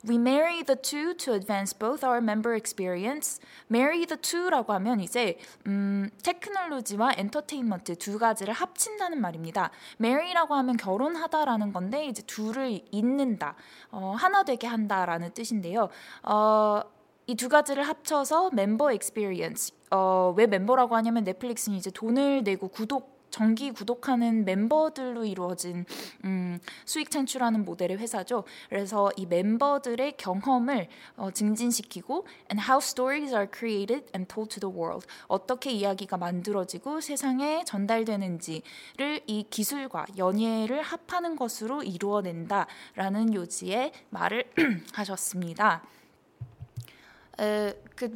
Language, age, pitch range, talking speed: English, 20-39, 200-275 Hz, 110 wpm